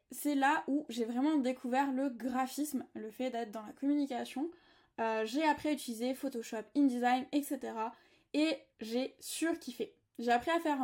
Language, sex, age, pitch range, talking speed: French, female, 20-39, 250-315 Hz, 160 wpm